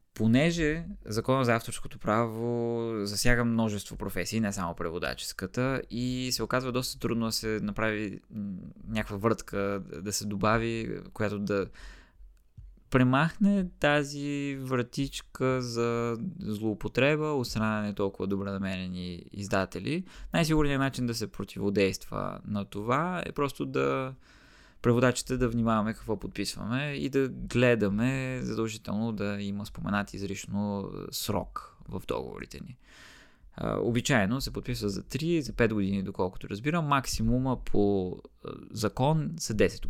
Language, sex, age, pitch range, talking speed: Bulgarian, male, 20-39, 100-120 Hz, 115 wpm